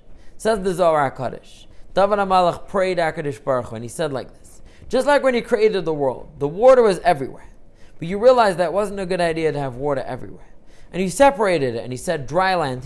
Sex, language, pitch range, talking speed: male, English, 150-210 Hz, 215 wpm